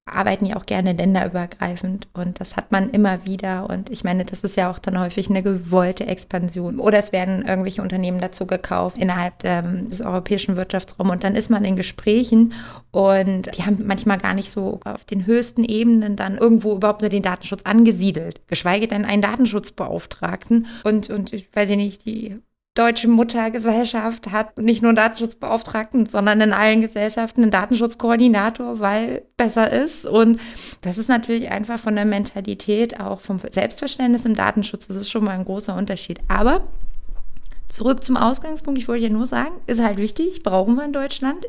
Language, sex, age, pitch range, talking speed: German, female, 20-39, 195-230 Hz, 175 wpm